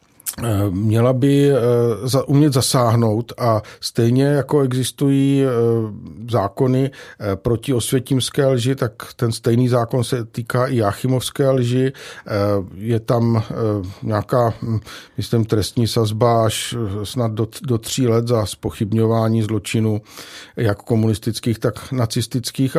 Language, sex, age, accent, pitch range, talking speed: Czech, male, 50-69, native, 110-130 Hz, 105 wpm